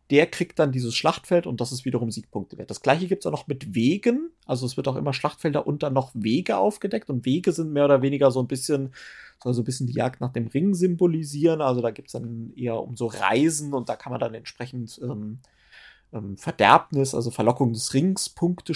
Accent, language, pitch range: German, German, 120-165 Hz